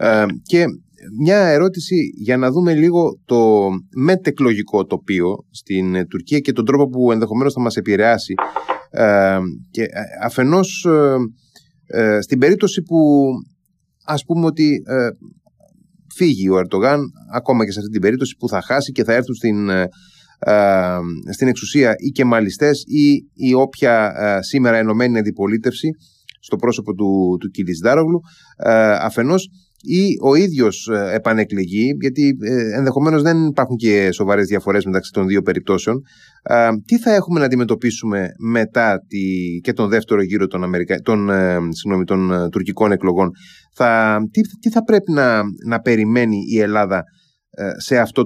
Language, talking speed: Greek, 145 wpm